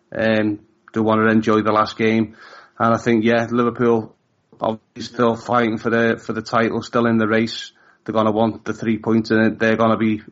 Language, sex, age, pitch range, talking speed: English, male, 30-49, 110-125 Hz, 220 wpm